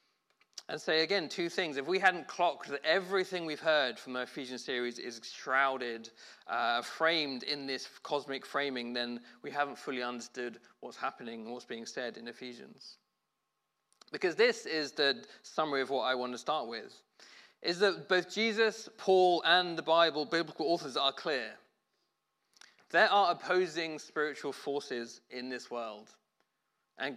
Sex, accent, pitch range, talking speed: male, British, 125-165 Hz, 160 wpm